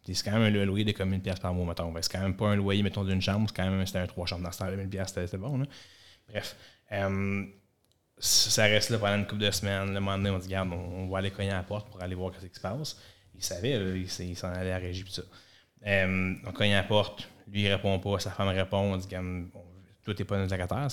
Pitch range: 95-105 Hz